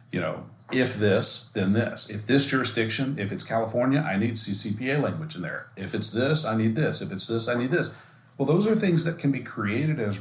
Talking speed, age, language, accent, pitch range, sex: 230 wpm, 40-59, English, American, 105-140 Hz, male